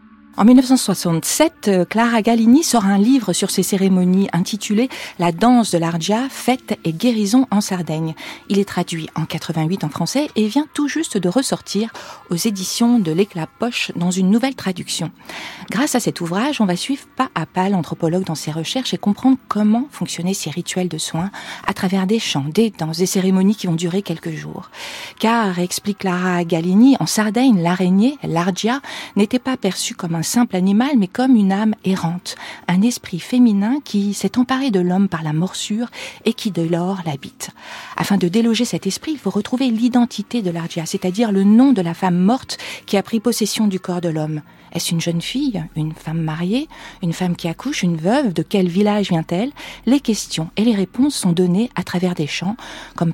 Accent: French